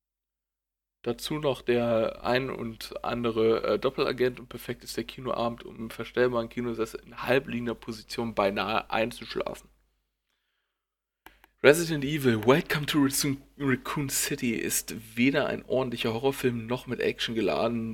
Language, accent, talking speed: German, German, 125 wpm